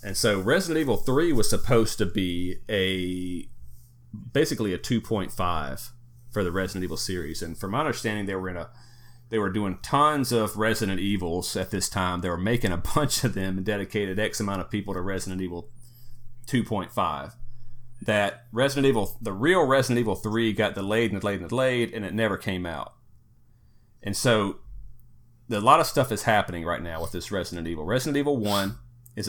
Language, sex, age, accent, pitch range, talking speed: English, male, 40-59, American, 95-120 Hz, 185 wpm